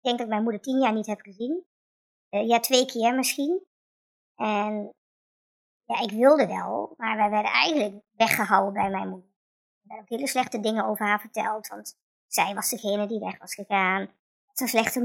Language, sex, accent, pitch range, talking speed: Dutch, male, Dutch, 210-255 Hz, 200 wpm